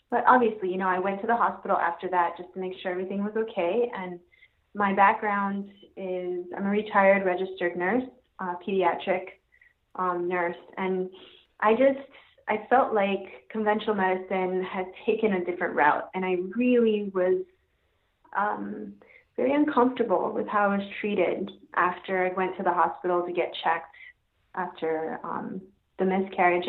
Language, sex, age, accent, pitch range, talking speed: English, female, 20-39, American, 180-215 Hz, 155 wpm